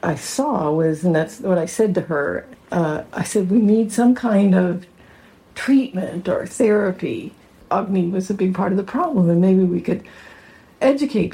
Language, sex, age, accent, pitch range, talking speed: English, female, 60-79, American, 175-200 Hz, 180 wpm